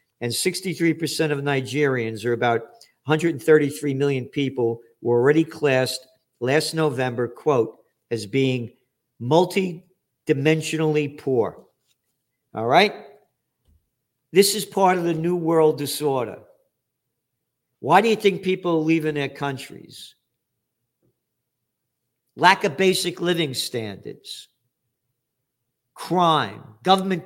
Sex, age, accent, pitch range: male, 50-69, American, 130-175 Hz